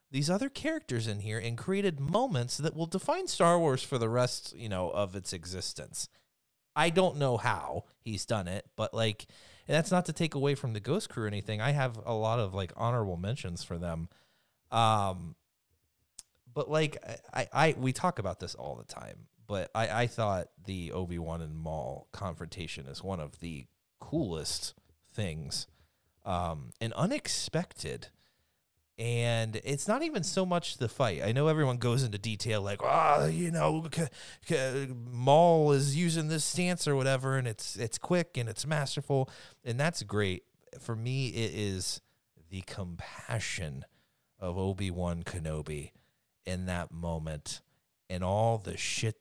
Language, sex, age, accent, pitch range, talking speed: English, male, 30-49, American, 90-140 Hz, 170 wpm